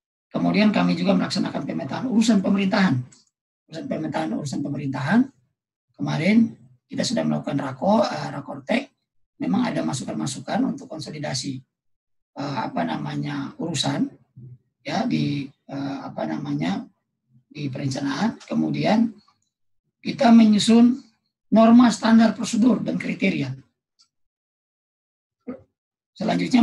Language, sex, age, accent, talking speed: Indonesian, male, 40-59, native, 90 wpm